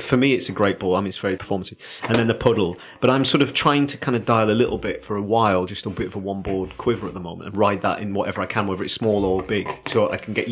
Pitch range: 100-120 Hz